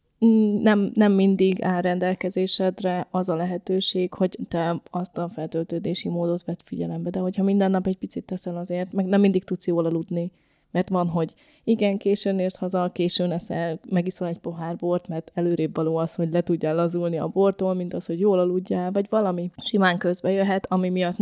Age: 20-39